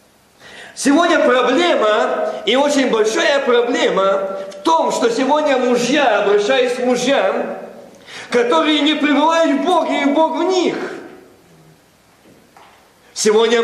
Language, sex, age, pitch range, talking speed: Russian, male, 50-69, 180-285 Hz, 105 wpm